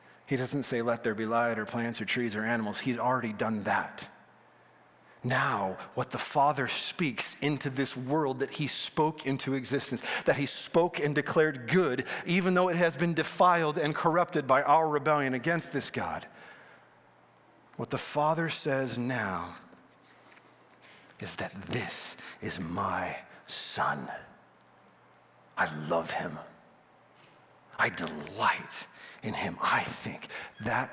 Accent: American